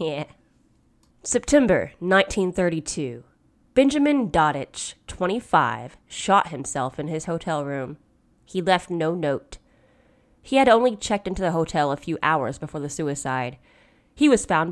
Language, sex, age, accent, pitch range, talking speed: English, female, 20-39, American, 155-210 Hz, 125 wpm